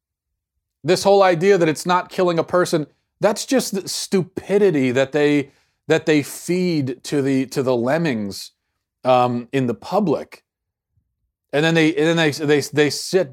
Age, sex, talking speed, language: 30-49, male, 160 wpm, English